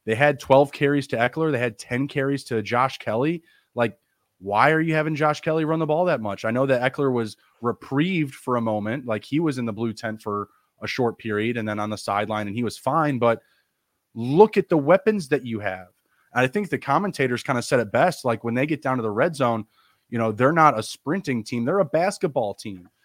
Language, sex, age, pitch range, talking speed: English, male, 30-49, 115-155 Hz, 235 wpm